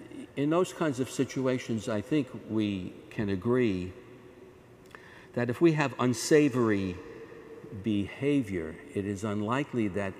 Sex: male